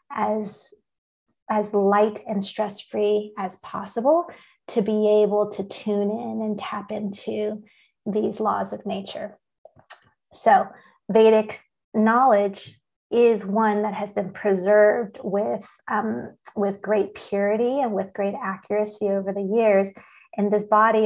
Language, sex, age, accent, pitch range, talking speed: English, female, 30-49, American, 195-215 Hz, 125 wpm